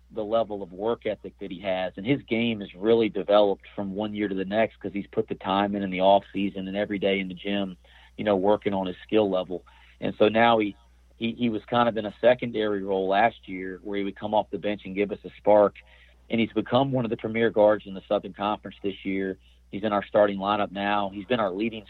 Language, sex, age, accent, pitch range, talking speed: English, male, 40-59, American, 95-110 Hz, 255 wpm